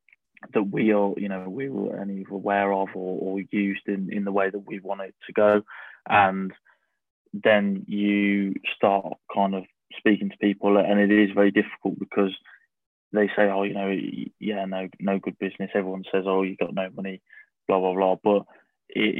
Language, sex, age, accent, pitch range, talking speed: English, male, 20-39, British, 95-105 Hz, 190 wpm